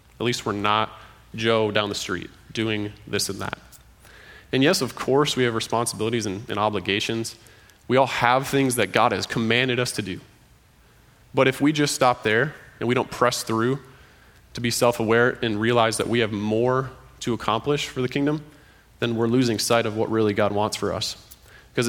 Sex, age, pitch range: male, 20-39, 105-125 Hz